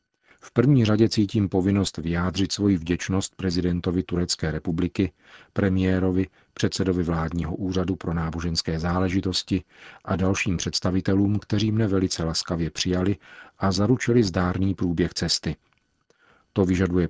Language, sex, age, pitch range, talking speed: Czech, male, 40-59, 85-95 Hz, 115 wpm